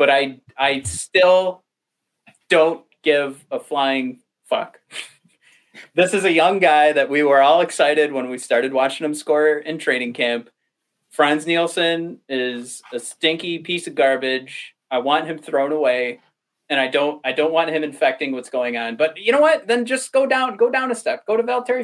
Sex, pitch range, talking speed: male, 135-175 Hz, 185 wpm